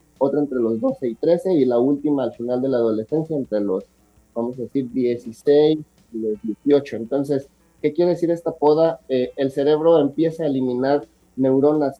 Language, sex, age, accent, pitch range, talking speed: Spanish, male, 30-49, Mexican, 120-160 Hz, 180 wpm